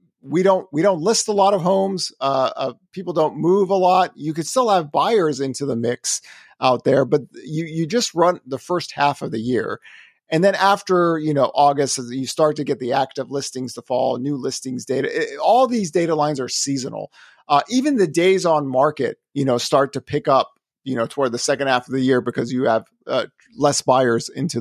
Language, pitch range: English, 130-170 Hz